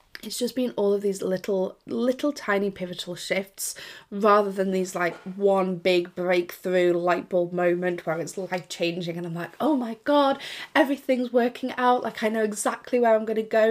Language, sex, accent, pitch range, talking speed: English, female, British, 175-205 Hz, 190 wpm